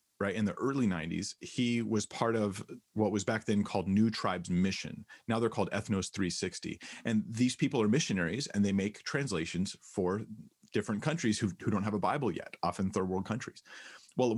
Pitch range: 95-115 Hz